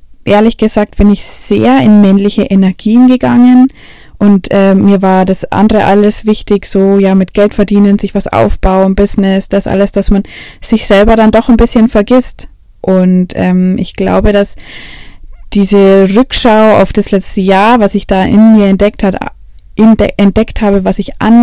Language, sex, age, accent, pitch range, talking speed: German, female, 20-39, German, 195-215 Hz, 170 wpm